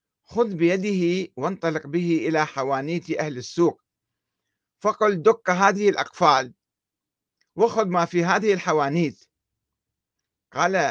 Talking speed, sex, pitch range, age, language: 100 wpm, male, 140-180 Hz, 50-69, Arabic